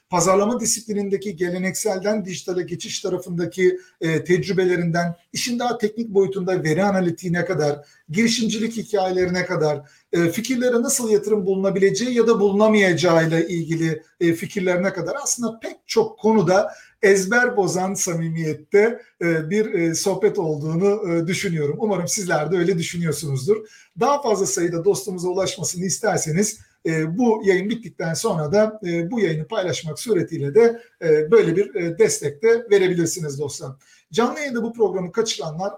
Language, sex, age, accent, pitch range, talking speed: Turkish, male, 50-69, native, 170-215 Hz, 115 wpm